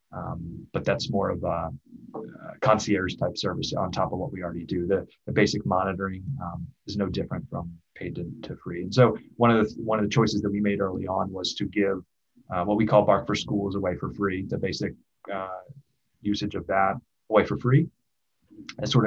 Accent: American